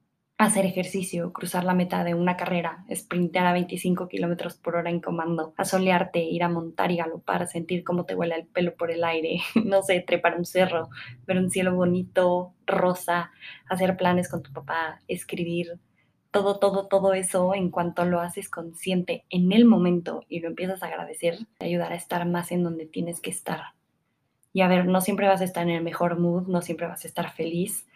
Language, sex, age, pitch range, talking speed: Spanish, female, 20-39, 170-185 Hz, 195 wpm